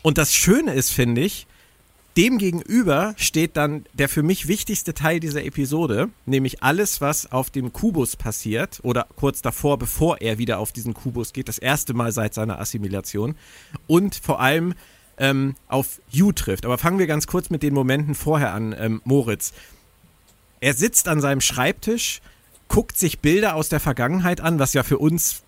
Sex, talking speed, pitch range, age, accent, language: male, 175 wpm, 125-160 Hz, 50-69, German, German